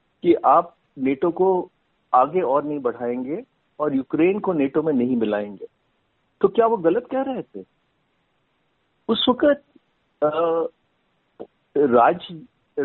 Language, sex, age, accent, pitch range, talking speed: Hindi, male, 50-69, native, 150-230 Hz, 115 wpm